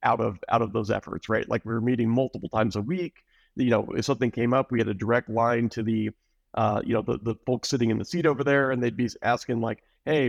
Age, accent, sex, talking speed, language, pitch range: 40-59, American, male, 270 wpm, English, 110-125 Hz